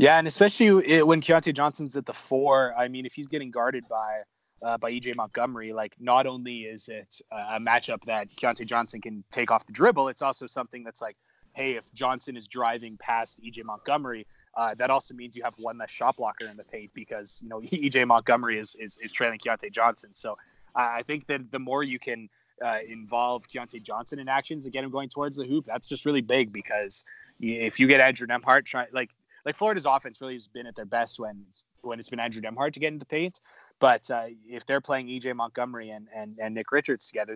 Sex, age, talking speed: male, 20-39, 220 wpm